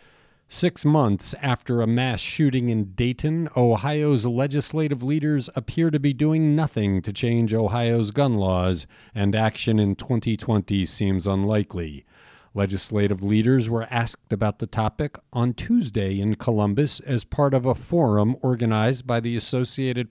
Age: 50-69